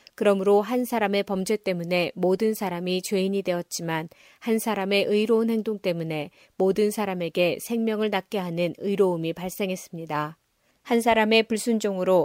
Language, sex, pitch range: Korean, female, 175-210 Hz